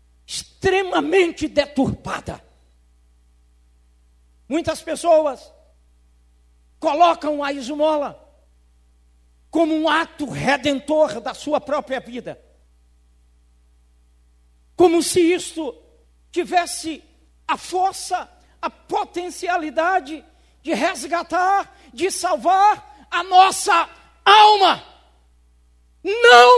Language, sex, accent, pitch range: Portuguese, male, Brazilian, 275-410 Hz